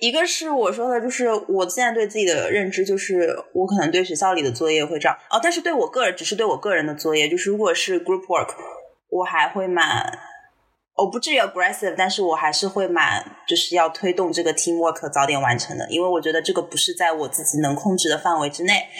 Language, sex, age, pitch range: Chinese, female, 20-39, 165-230 Hz